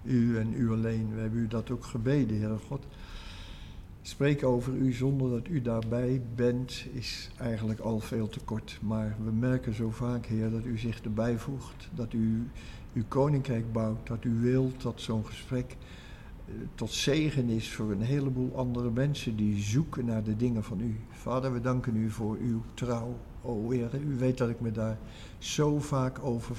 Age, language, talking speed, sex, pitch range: 60-79, Dutch, 185 wpm, male, 110-130 Hz